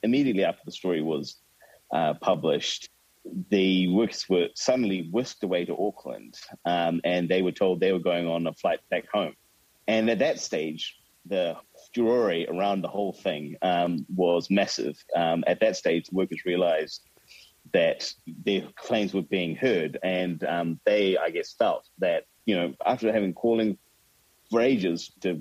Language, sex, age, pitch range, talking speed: English, male, 30-49, 85-100 Hz, 165 wpm